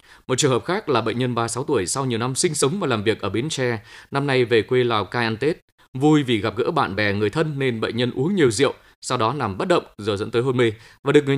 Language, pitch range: Vietnamese, 110-145 Hz